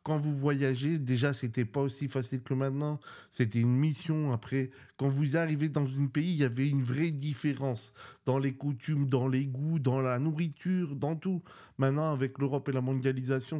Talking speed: 195 wpm